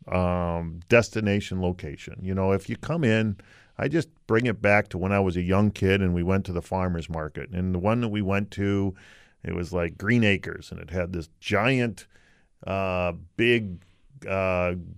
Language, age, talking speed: English, 40-59, 190 wpm